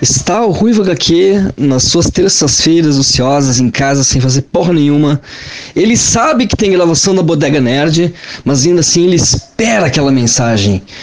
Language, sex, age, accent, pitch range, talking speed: Portuguese, male, 20-39, Brazilian, 135-210 Hz, 160 wpm